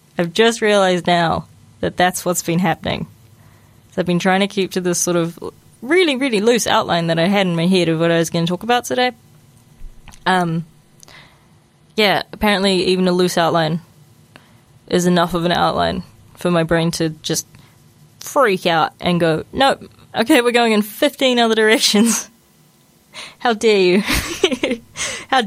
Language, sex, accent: English, female, Australian